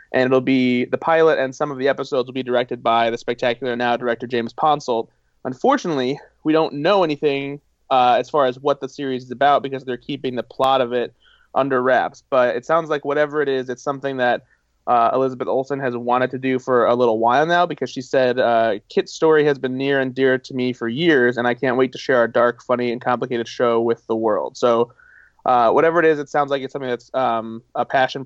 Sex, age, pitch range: male, 20-39, 125-150 Hz